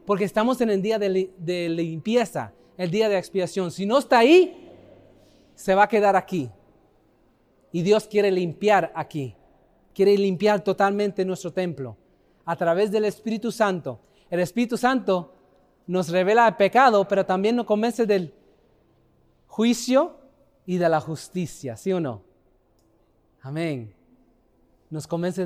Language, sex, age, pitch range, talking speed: Spanish, male, 30-49, 185-270 Hz, 140 wpm